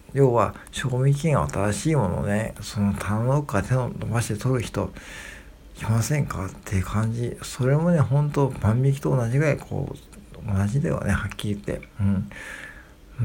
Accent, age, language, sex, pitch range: native, 60-79, Japanese, male, 105-145 Hz